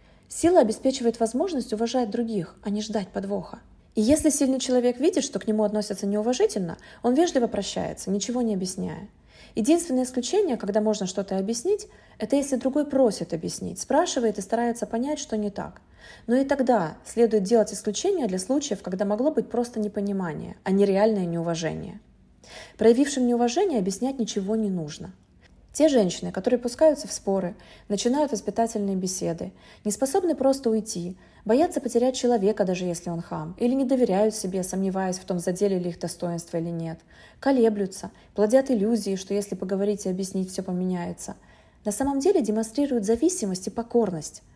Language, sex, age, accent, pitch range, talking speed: Russian, female, 30-49, native, 195-255 Hz, 155 wpm